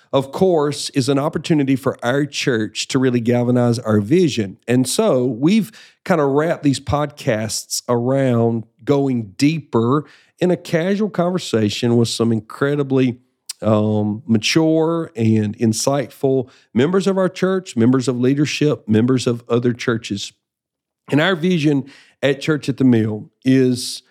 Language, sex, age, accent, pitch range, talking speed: English, male, 50-69, American, 115-145 Hz, 135 wpm